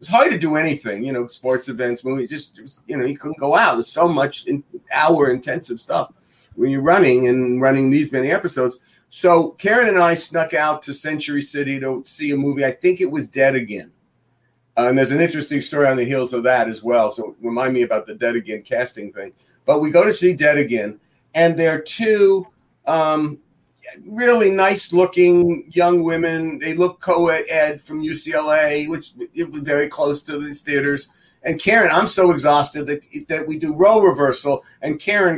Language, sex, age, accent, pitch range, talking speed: English, male, 50-69, American, 135-175 Hz, 190 wpm